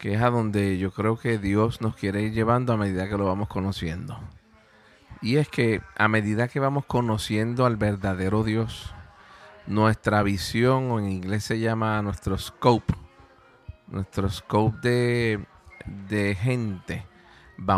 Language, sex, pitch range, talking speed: Spanish, male, 100-125 Hz, 150 wpm